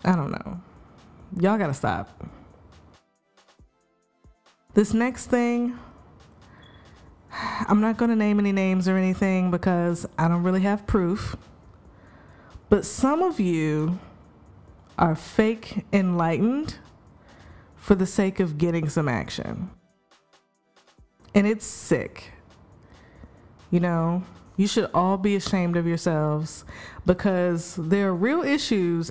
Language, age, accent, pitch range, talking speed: English, 20-39, American, 150-205 Hz, 110 wpm